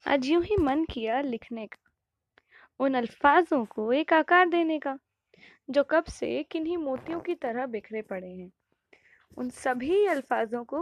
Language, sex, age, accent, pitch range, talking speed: Hindi, female, 20-39, native, 225-345 Hz, 145 wpm